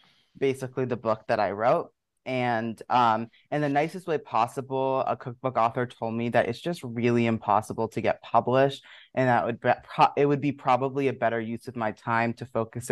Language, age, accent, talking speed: English, 20-39, American, 180 wpm